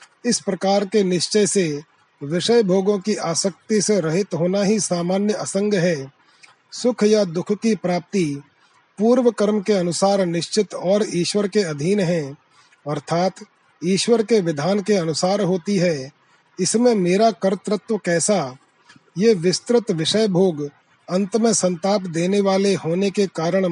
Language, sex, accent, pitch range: Hindi, male, native, 170-205 Hz